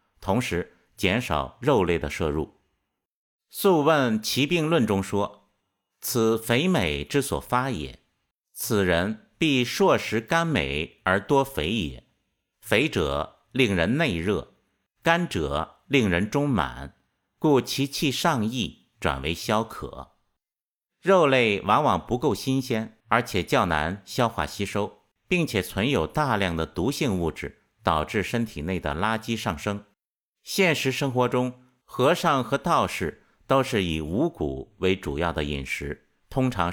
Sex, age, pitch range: male, 50-69, 90-130 Hz